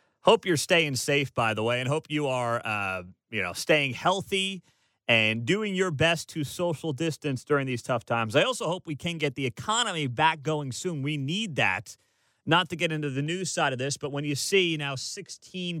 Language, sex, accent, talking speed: English, male, American, 215 wpm